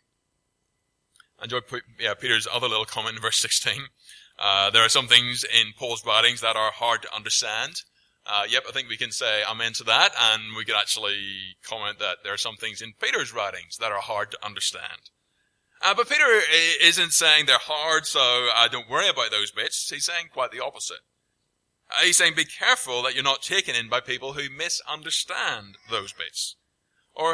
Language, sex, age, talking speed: English, male, 20-39, 195 wpm